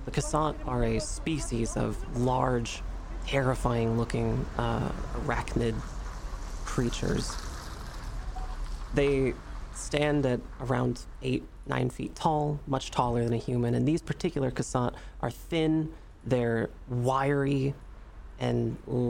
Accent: American